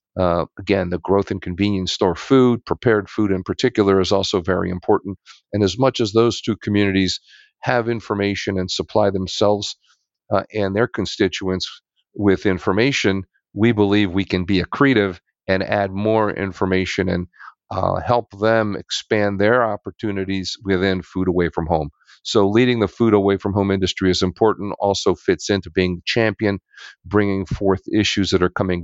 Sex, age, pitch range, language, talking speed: male, 40-59, 90-100 Hz, English, 160 wpm